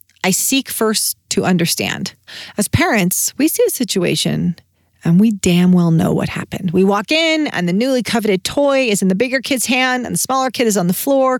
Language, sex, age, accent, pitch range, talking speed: English, female, 40-59, American, 185-270 Hz, 210 wpm